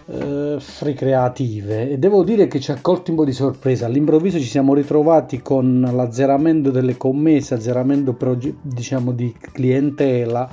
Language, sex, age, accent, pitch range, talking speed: Italian, male, 30-49, native, 120-150 Hz, 155 wpm